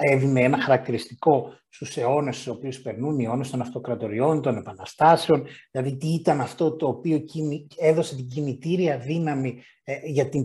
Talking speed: 150 wpm